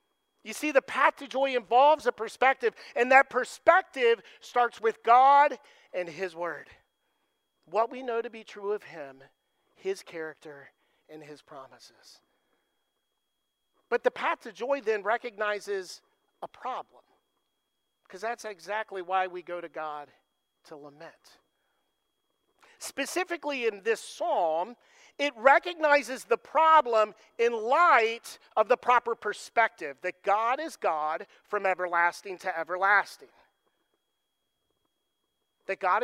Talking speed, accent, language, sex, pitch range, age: 125 wpm, American, English, male, 190-280 Hz, 50-69